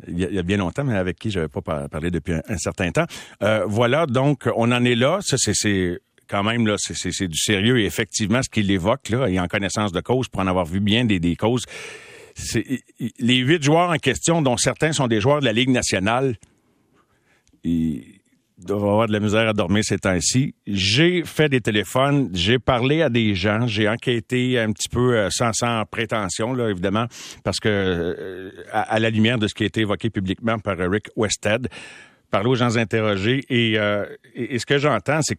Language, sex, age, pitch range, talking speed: French, male, 50-69, 105-135 Hz, 210 wpm